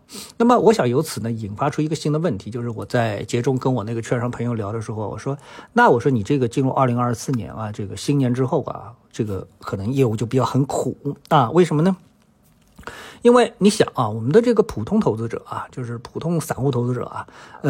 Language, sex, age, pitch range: Chinese, male, 50-69, 120-190 Hz